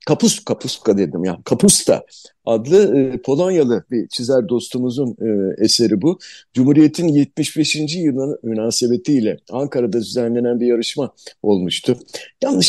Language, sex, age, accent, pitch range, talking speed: Turkish, male, 50-69, native, 115-170 Hz, 105 wpm